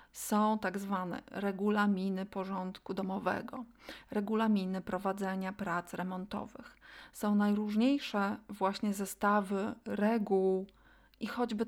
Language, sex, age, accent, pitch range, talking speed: Polish, female, 30-49, native, 200-245 Hz, 85 wpm